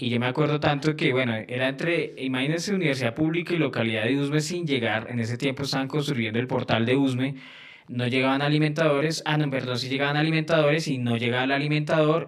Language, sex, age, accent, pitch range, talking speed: Spanish, male, 20-39, Colombian, 120-155 Hz, 205 wpm